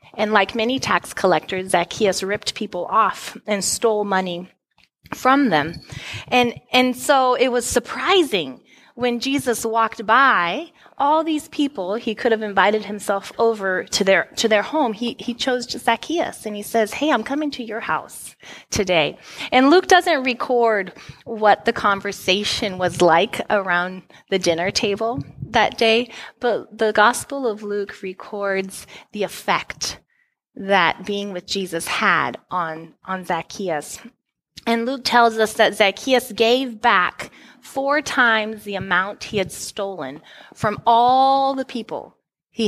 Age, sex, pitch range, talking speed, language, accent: 20-39, female, 195-245 Hz, 145 wpm, English, American